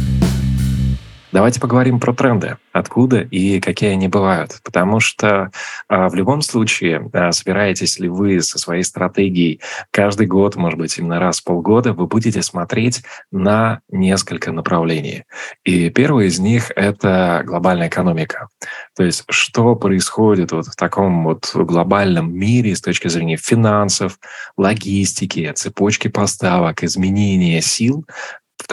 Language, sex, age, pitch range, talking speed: Russian, male, 20-39, 85-110 Hz, 125 wpm